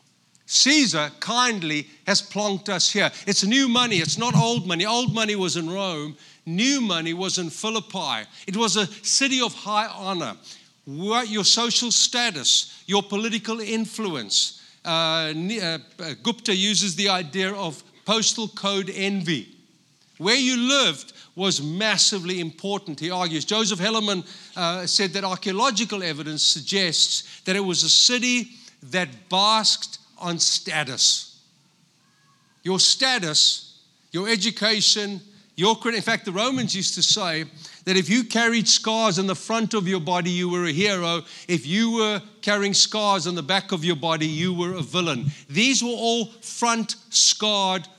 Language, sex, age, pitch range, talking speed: English, male, 50-69, 170-220 Hz, 150 wpm